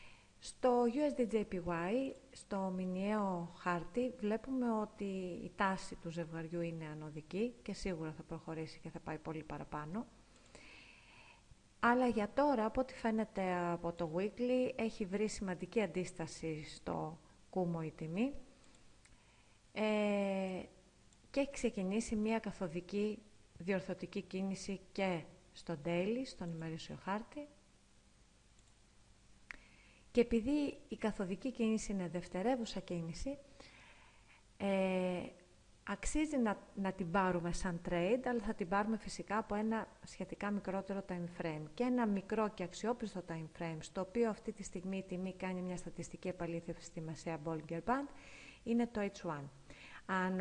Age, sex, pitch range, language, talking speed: 40-59, female, 170-220 Hz, Greek, 125 wpm